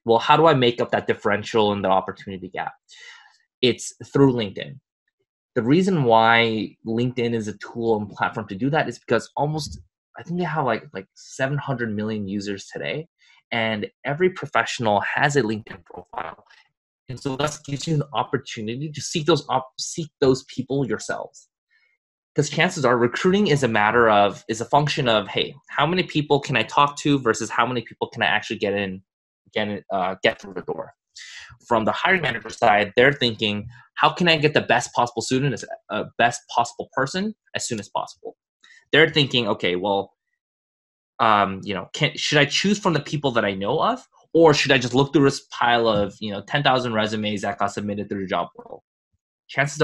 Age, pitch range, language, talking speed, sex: 20-39, 110-155 Hz, English, 190 wpm, male